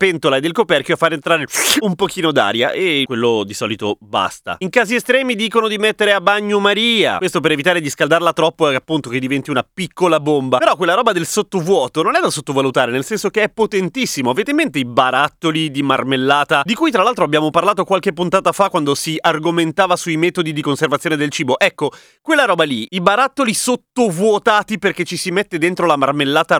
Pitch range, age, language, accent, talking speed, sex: 155-210 Hz, 30-49, Italian, native, 200 wpm, male